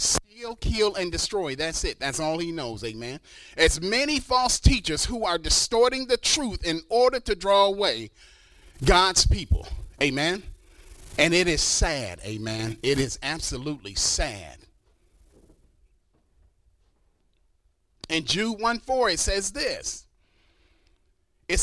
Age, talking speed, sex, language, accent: 40-59, 120 wpm, male, English, American